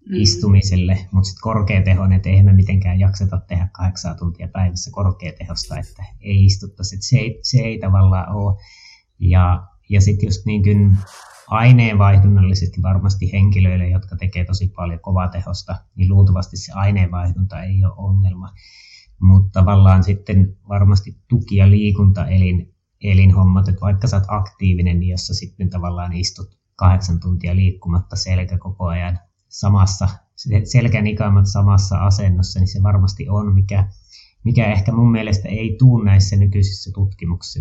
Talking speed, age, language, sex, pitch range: 135 wpm, 20-39, Finnish, male, 95-100 Hz